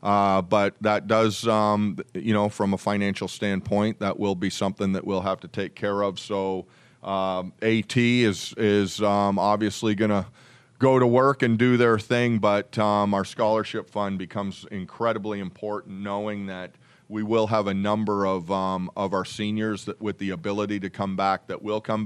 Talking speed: 180 wpm